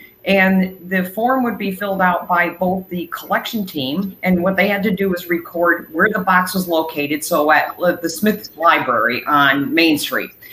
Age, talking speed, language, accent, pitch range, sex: 40-59, 190 wpm, English, American, 170-205 Hz, female